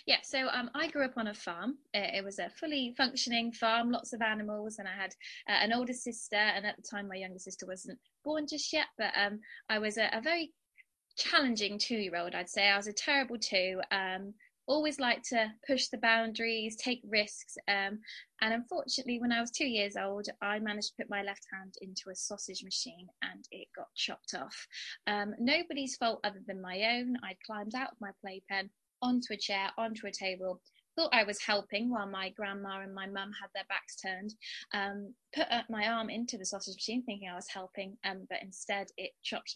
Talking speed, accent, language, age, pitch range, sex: 205 wpm, British, English, 20-39, 200-240 Hz, female